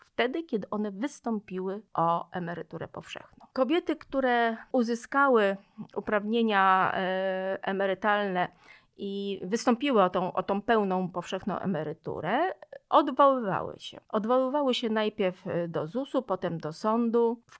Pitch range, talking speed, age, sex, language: 190-255 Hz, 105 wpm, 40-59, female, Polish